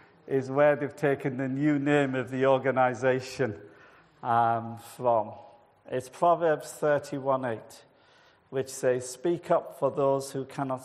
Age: 50-69